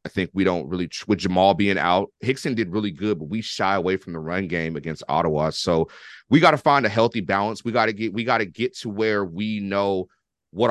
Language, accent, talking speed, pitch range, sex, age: English, American, 235 wpm, 90-115 Hz, male, 30-49